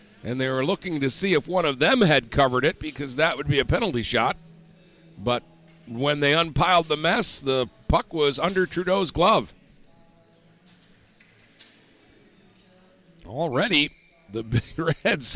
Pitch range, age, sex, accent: 125-160 Hz, 50-69, male, American